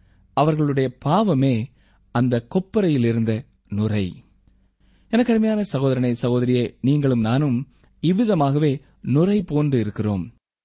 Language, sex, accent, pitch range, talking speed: Tamil, male, native, 110-155 Hz, 80 wpm